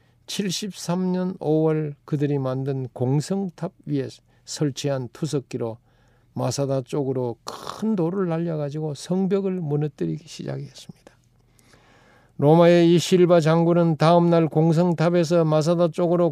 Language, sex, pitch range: Korean, male, 135-185 Hz